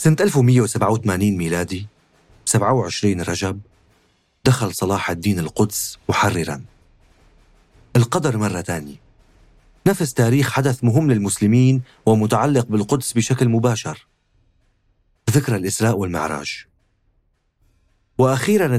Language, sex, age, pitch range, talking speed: Arabic, male, 40-59, 90-125 Hz, 85 wpm